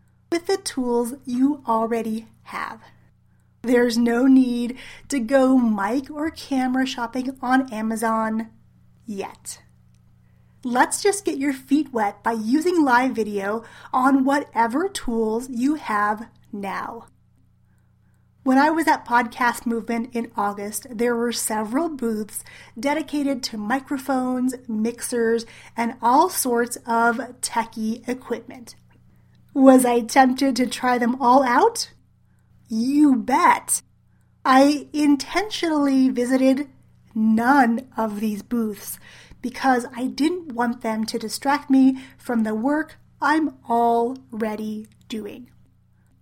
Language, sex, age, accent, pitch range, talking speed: English, female, 30-49, American, 225-270 Hz, 115 wpm